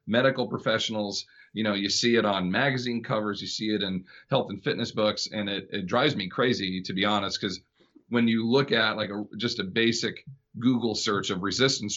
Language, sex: English, male